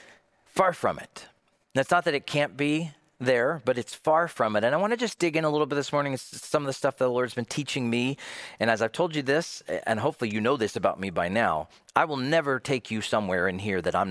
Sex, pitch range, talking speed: male, 115-160 Hz, 265 wpm